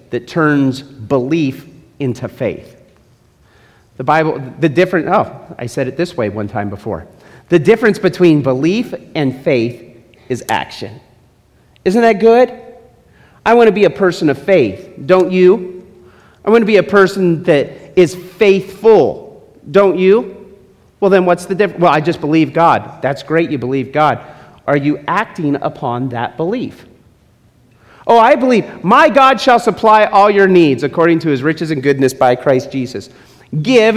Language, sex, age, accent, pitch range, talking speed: English, male, 40-59, American, 130-195 Hz, 155 wpm